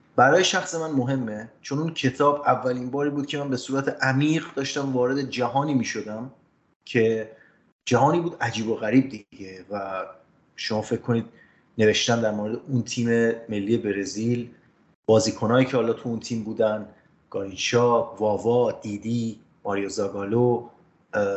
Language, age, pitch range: Persian, 30-49, 110-130 Hz